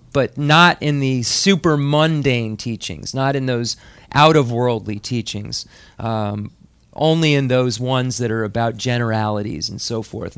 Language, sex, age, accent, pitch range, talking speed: English, male, 40-59, American, 115-140 Hz, 135 wpm